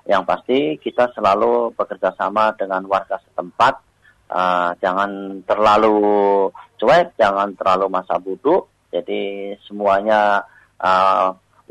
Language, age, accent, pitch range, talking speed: Indonesian, 30-49, native, 95-115 Hz, 100 wpm